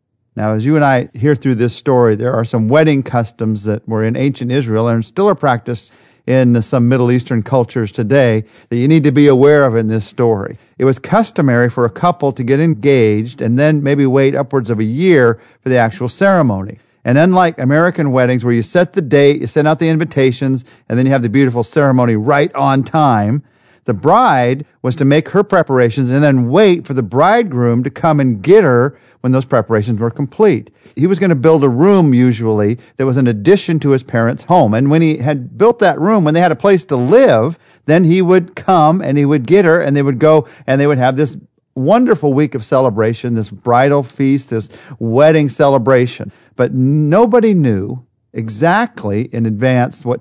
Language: English